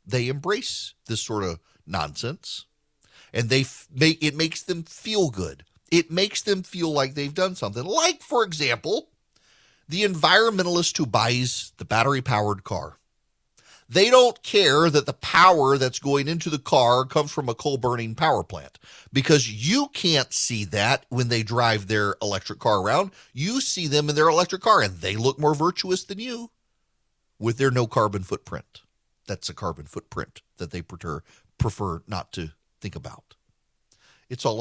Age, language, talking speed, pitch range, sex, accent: 40-59, English, 160 wpm, 105-150 Hz, male, American